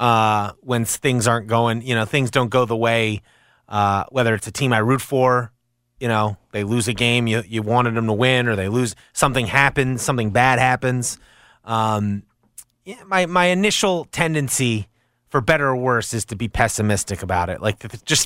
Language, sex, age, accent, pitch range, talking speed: English, male, 30-49, American, 110-155 Hz, 190 wpm